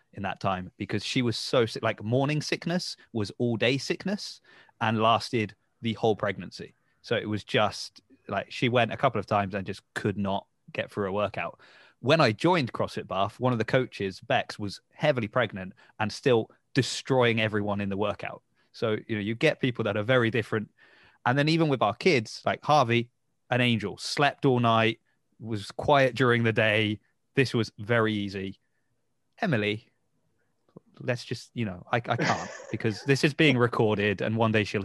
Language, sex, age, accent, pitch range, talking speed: English, male, 20-39, British, 110-135 Hz, 185 wpm